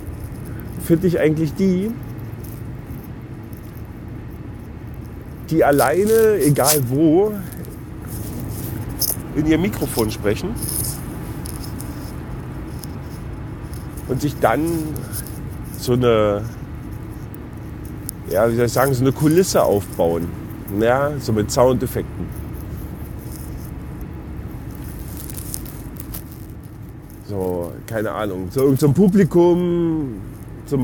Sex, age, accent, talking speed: male, 40-59, German, 75 wpm